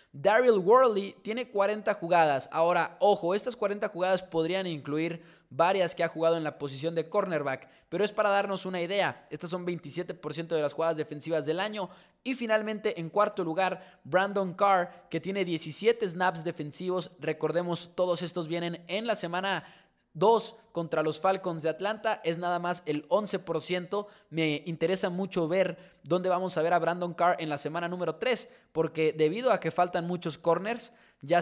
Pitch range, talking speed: 160-195 Hz, 170 wpm